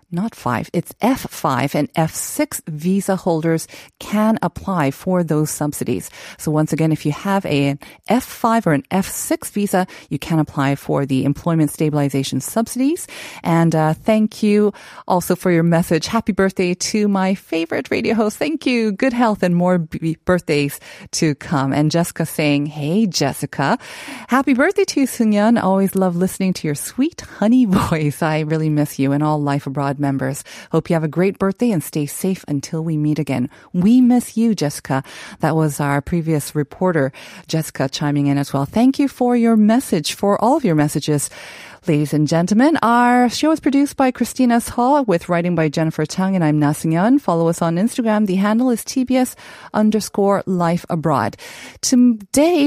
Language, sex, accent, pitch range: Korean, female, American, 155-225 Hz